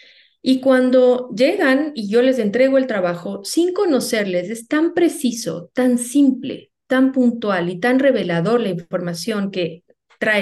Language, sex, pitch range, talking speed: Spanish, female, 215-265 Hz, 145 wpm